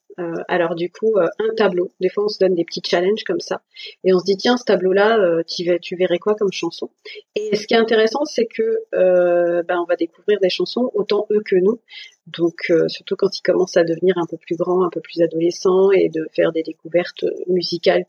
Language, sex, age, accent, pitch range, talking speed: French, female, 30-49, French, 175-230 Hz, 225 wpm